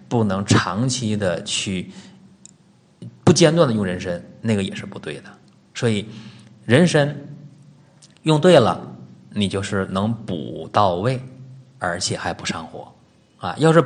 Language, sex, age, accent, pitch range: Chinese, male, 20-39, native, 100-150 Hz